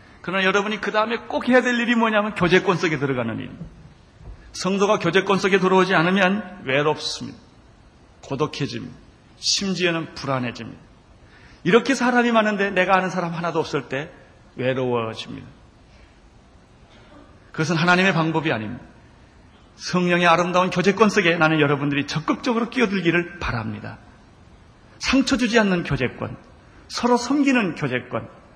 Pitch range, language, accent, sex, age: 135-225 Hz, Korean, native, male, 40-59